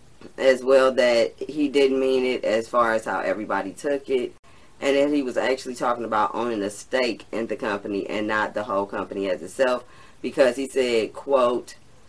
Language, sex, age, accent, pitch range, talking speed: English, female, 20-39, American, 110-135 Hz, 190 wpm